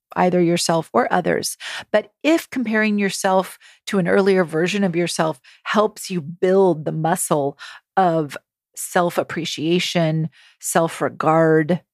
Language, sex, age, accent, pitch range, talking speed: English, female, 40-59, American, 160-195 Hz, 110 wpm